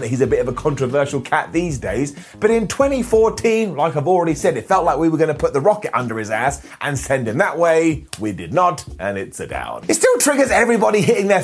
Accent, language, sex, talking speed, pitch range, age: British, English, male, 250 wpm, 140-205 Hz, 30-49